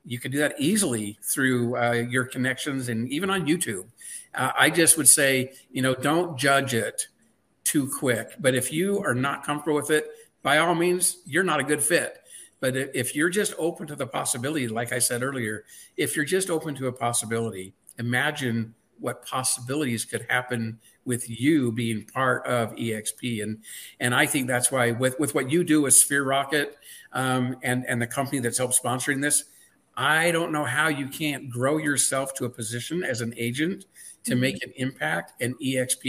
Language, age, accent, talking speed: English, 50-69, American, 190 wpm